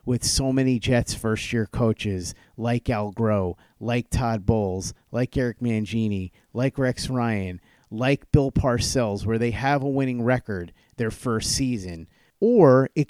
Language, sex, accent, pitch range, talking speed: English, male, American, 105-135 Hz, 145 wpm